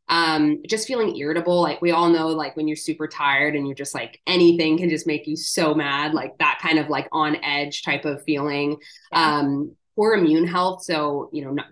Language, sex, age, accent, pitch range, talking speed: English, female, 20-39, American, 150-180 Hz, 215 wpm